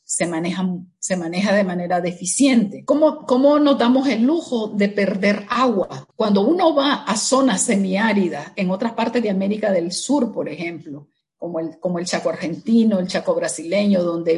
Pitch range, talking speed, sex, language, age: 195-250 Hz, 170 wpm, female, Spanish, 50-69